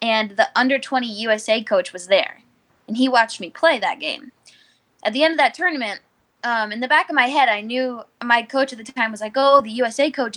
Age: 10-29